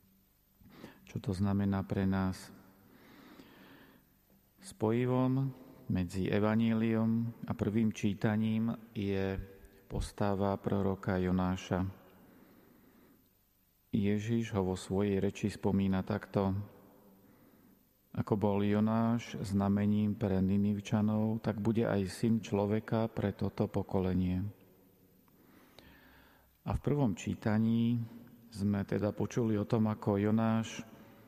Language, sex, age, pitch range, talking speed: Slovak, male, 40-59, 95-110 Hz, 90 wpm